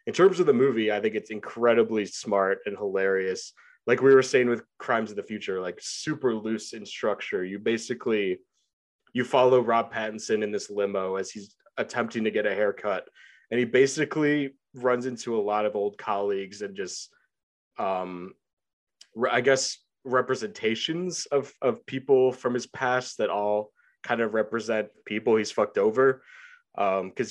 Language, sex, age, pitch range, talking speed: English, male, 20-39, 105-145 Hz, 165 wpm